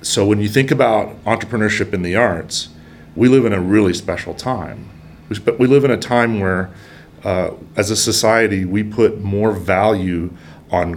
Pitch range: 80-105 Hz